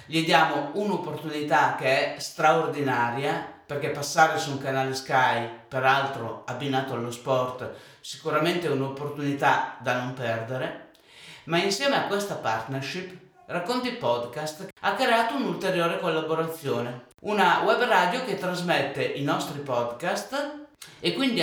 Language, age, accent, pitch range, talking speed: Italian, 50-69, native, 130-190 Hz, 120 wpm